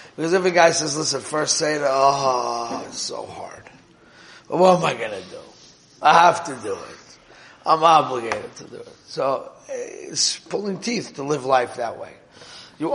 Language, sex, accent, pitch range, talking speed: English, male, American, 130-180 Hz, 180 wpm